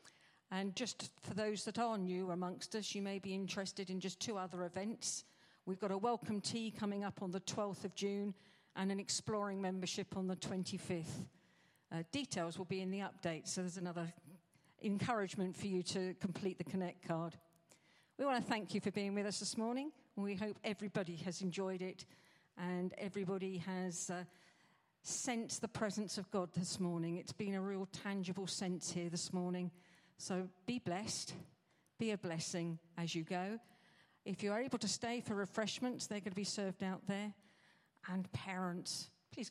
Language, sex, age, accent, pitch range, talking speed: English, female, 50-69, British, 180-210 Hz, 180 wpm